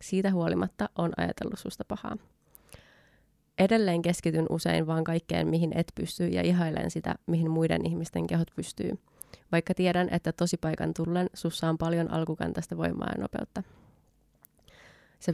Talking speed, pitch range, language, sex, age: 135 wpm, 160-175 Hz, Finnish, female, 20-39